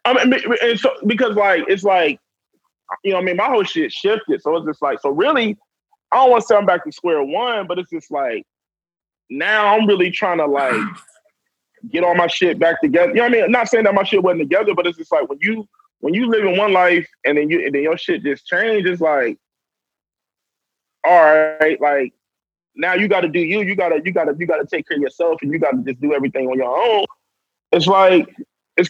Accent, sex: American, male